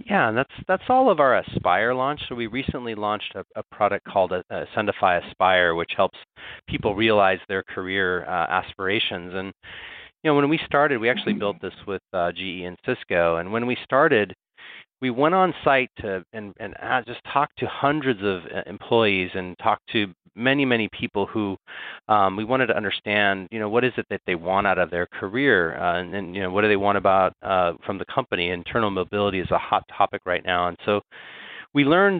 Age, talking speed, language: 30-49, 205 wpm, English